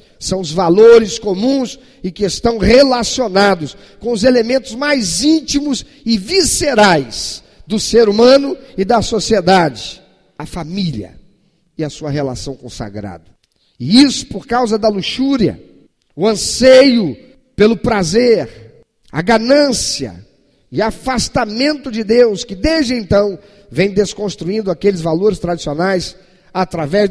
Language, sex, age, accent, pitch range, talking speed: Portuguese, male, 50-69, Brazilian, 180-245 Hz, 120 wpm